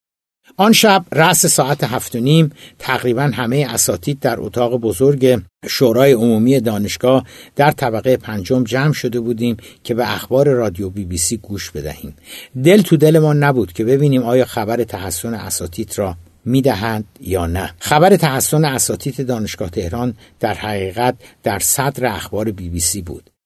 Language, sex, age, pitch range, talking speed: Persian, male, 60-79, 105-140 Hz, 155 wpm